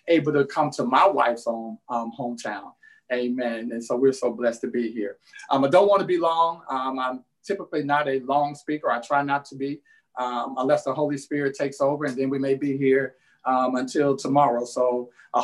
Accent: American